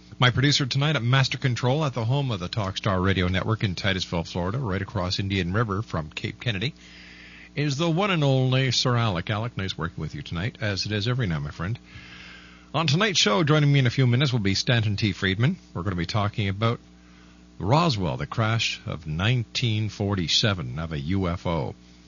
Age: 50-69